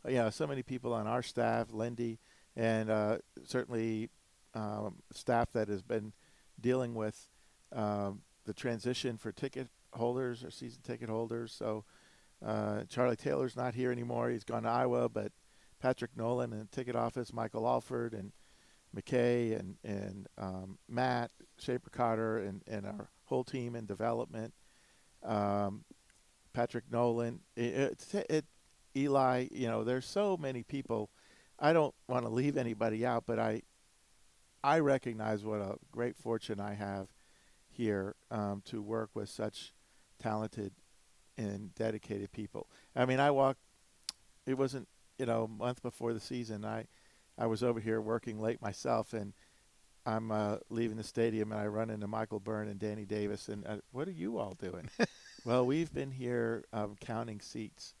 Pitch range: 105-125 Hz